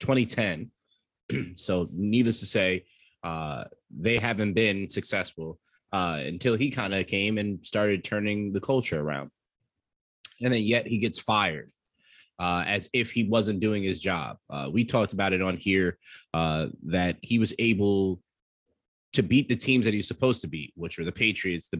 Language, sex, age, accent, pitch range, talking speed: English, male, 20-39, American, 95-120 Hz, 175 wpm